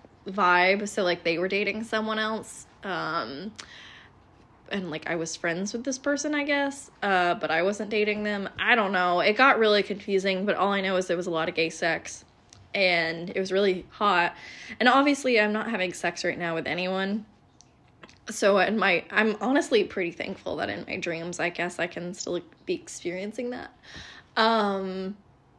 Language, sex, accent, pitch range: English, female, American, 170-215 Hz